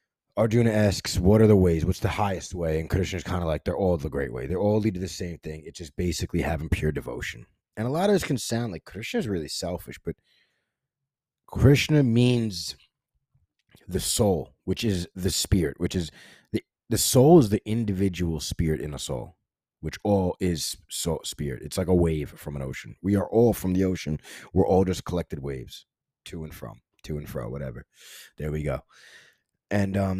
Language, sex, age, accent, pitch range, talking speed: English, male, 30-49, American, 80-110 Hz, 200 wpm